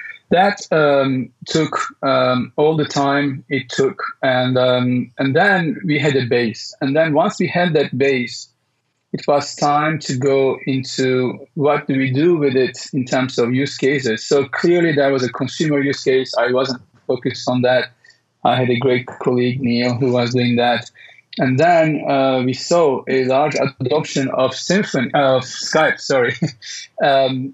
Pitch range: 125-150 Hz